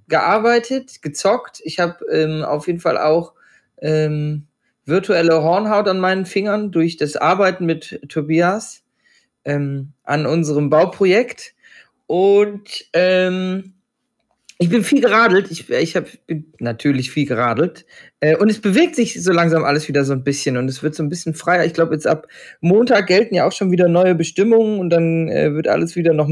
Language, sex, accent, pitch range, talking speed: German, male, German, 155-205 Hz, 170 wpm